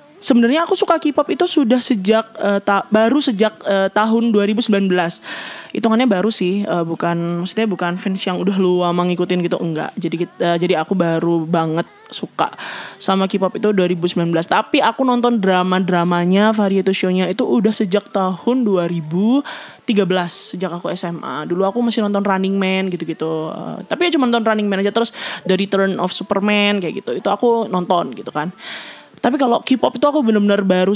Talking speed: 170 wpm